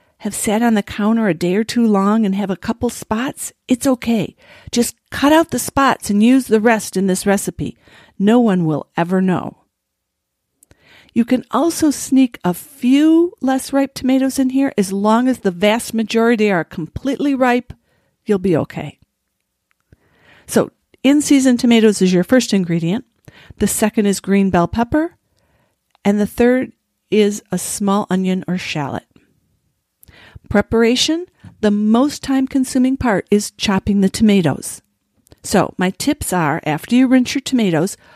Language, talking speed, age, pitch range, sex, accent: English, 155 wpm, 50-69, 185-250 Hz, female, American